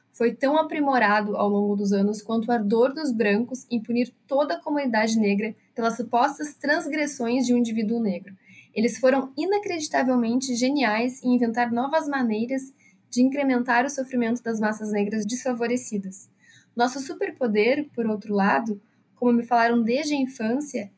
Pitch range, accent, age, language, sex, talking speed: 215-265 Hz, Brazilian, 10-29, Portuguese, female, 150 wpm